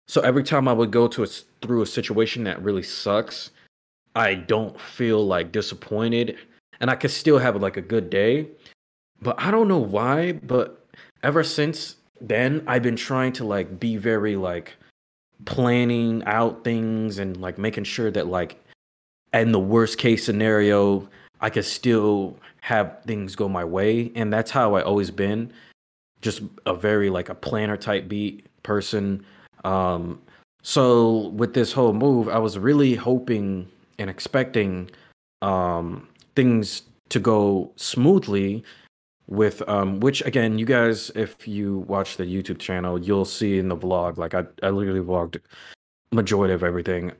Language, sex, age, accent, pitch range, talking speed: English, male, 20-39, American, 95-120 Hz, 155 wpm